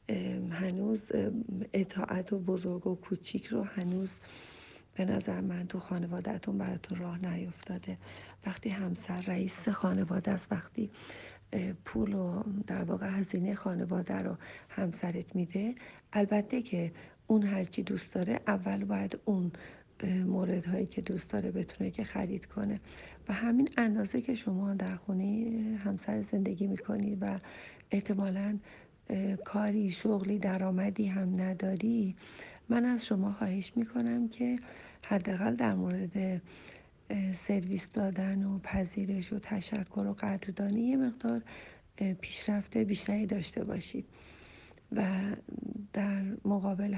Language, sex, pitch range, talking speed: Persian, female, 190-215 Hz, 115 wpm